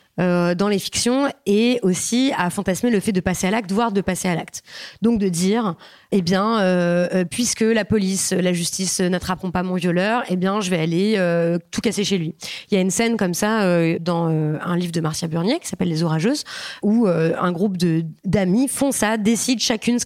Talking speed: 220 wpm